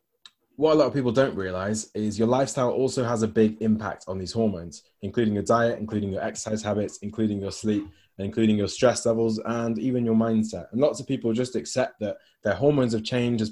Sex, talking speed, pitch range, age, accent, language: male, 215 wpm, 100-115 Hz, 20-39, British, English